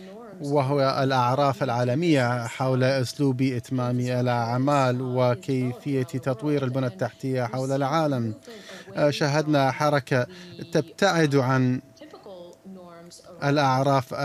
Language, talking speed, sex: Arabic, 75 wpm, male